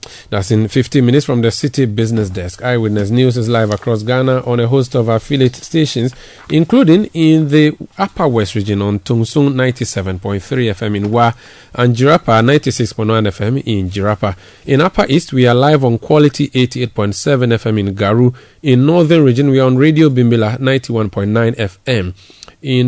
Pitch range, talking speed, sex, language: 105-135 Hz, 165 wpm, male, English